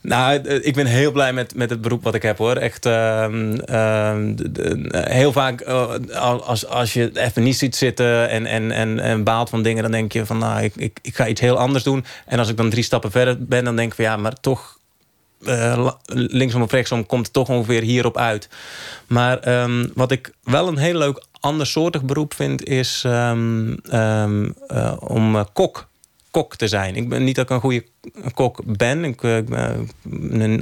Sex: male